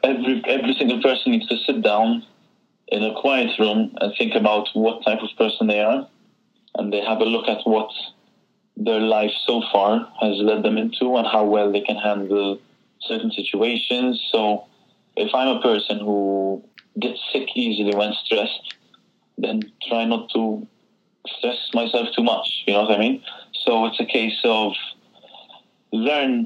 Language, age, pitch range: English, 20-39, 105-120 Hz